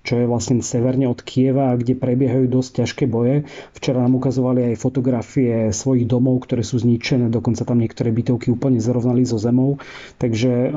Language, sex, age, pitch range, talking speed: Slovak, male, 30-49, 120-135 Hz, 165 wpm